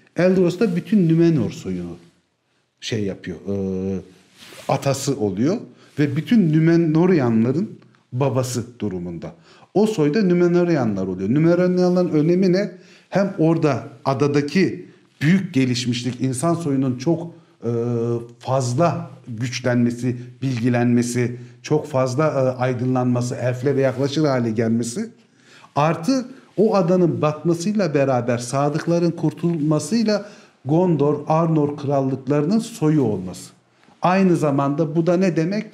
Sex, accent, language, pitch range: male, native, Turkish, 130-175 Hz